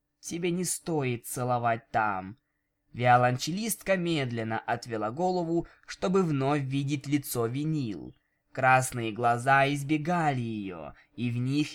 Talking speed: 105 wpm